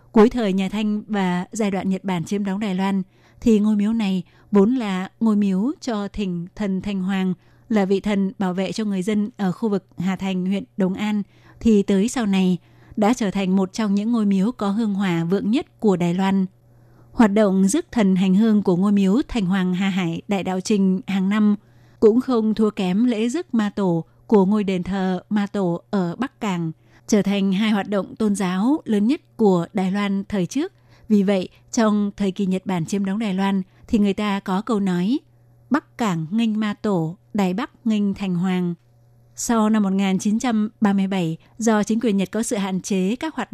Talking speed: 210 wpm